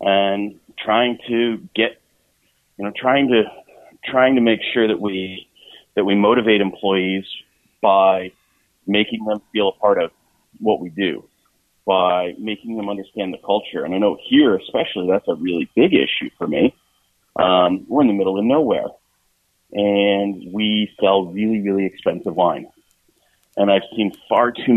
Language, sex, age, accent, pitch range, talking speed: English, male, 30-49, American, 95-110 Hz, 155 wpm